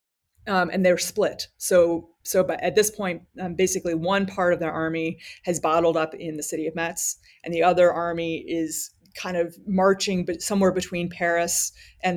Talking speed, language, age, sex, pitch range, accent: 185 wpm, English, 30-49, female, 165-195 Hz, American